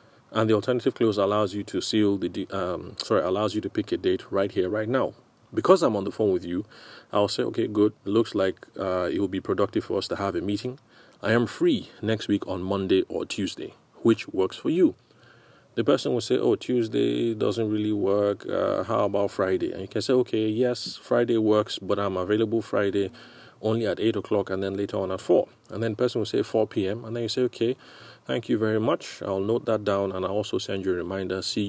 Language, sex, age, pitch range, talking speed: English, male, 30-49, 95-115 Hz, 230 wpm